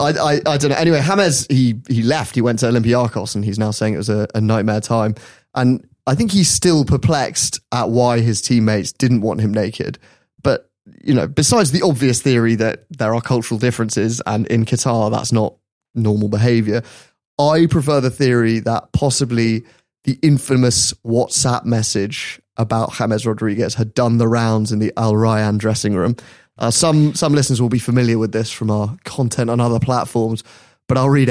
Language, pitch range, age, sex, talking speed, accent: English, 110-135 Hz, 30-49, male, 190 wpm, British